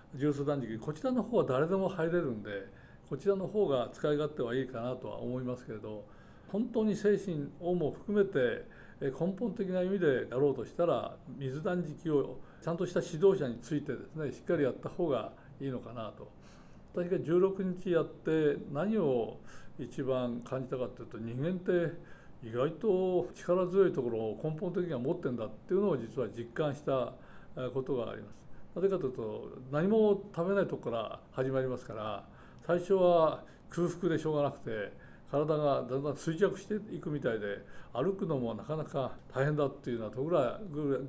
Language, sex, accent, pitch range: Japanese, male, native, 130-180 Hz